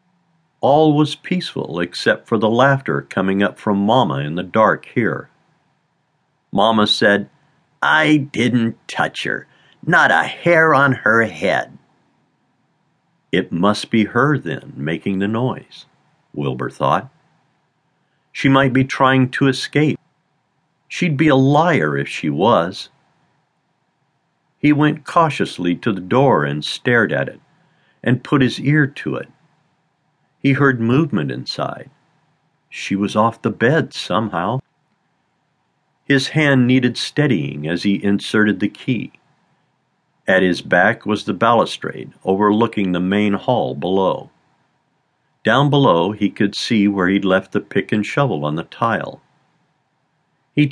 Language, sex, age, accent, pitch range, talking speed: English, male, 50-69, American, 100-150 Hz, 135 wpm